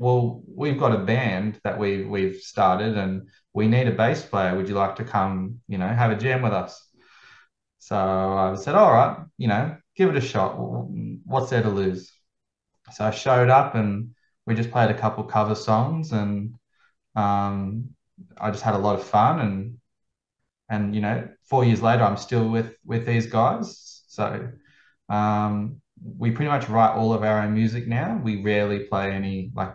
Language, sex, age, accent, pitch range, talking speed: English, male, 20-39, Australian, 100-120 Hz, 190 wpm